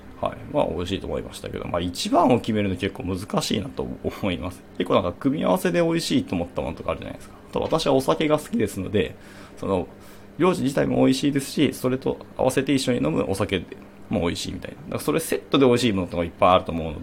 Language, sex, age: Japanese, male, 20-39